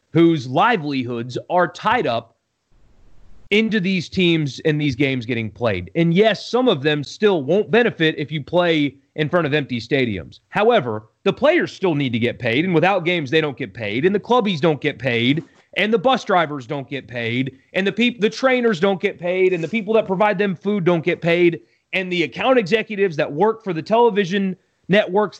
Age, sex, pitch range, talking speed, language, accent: 30-49, male, 150-215 Hz, 200 wpm, English, American